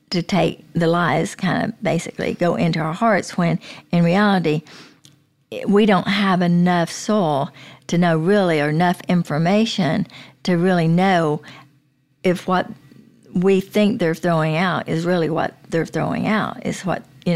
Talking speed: 150 wpm